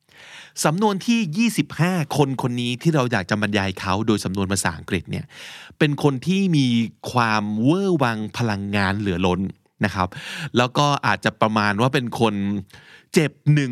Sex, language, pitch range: male, Thai, 110-160 Hz